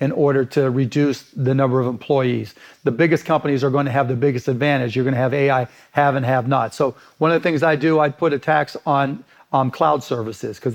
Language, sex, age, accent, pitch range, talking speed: English, male, 40-59, American, 135-160 Hz, 240 wpm